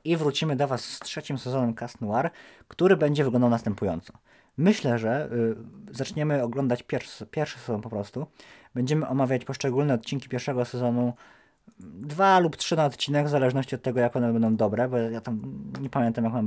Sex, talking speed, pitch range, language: male, 180 wpm, 115-150 Hz, Polish